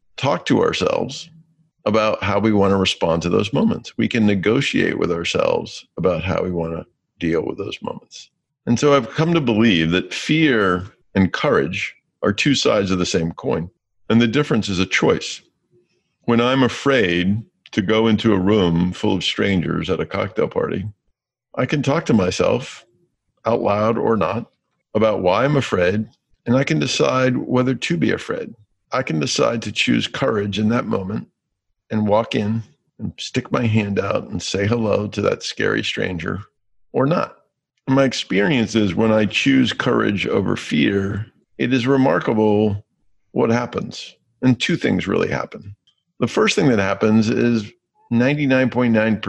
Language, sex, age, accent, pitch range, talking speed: English, male, 50-69, American, 100-120 Hz, 165 wpm